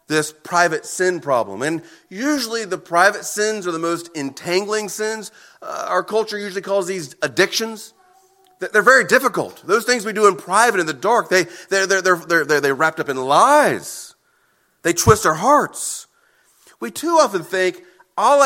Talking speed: 170 wpm